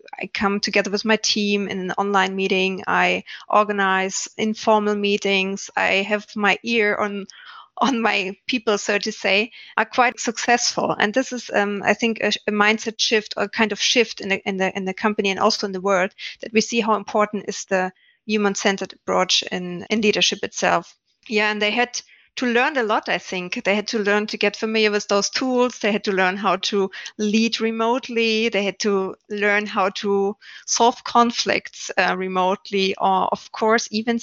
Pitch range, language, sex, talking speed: 195-225 Hz, English, female, 195 wpm